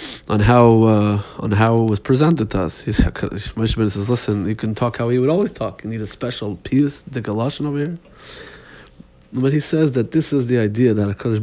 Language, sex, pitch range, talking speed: Hebrew, male, 105-125 Hz, 215 wpm